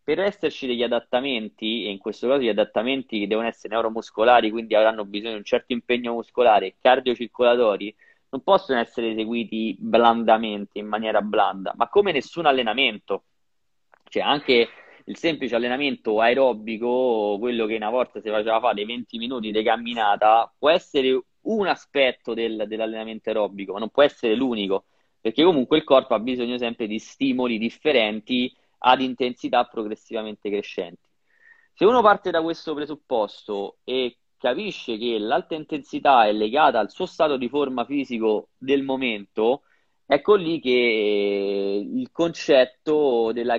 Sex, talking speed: male, 145 wpm